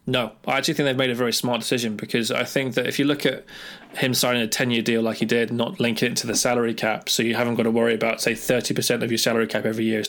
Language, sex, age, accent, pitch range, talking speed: English, male, 20-39, British, 115-135 Hz, 290 wpm